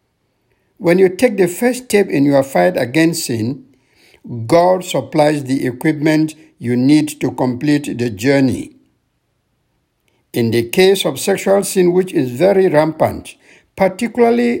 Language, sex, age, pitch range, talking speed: English, male, 60-79, 120-175 Hz, 130 wpm